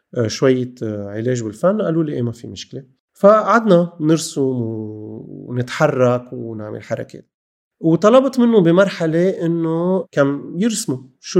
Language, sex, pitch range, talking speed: Arabic, male, 125-175 Hz, 110 wpm